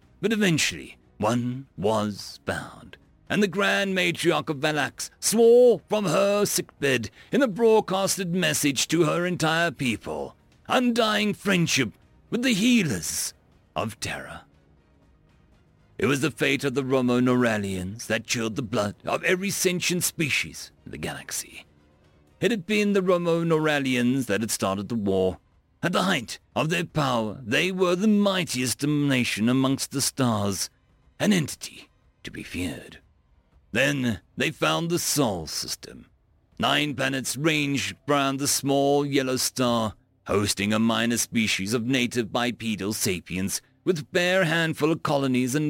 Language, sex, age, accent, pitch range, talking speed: English, male, 50-69, British, 110-170 Hz, 140 wpm